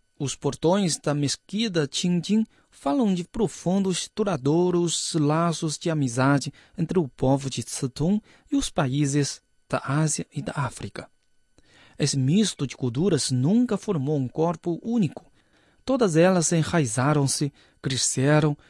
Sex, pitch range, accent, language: male, 135-185 Hz, Brazilian, Chinese